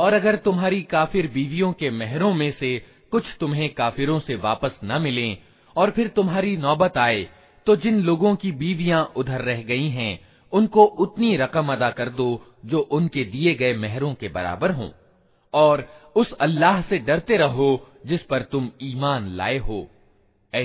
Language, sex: Hindi, male